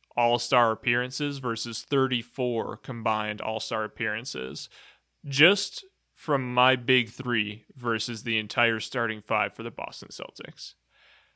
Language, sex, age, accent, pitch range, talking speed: English, male, 20-39, American, 115-135 Hz, 110 wpm